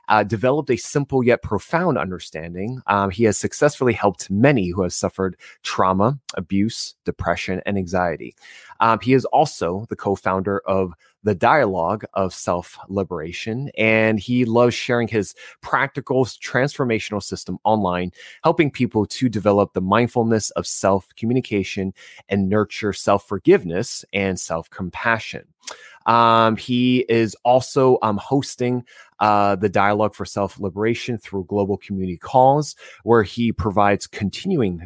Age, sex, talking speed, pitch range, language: 20-39, male, 135 wpm, 95-115 Hz, English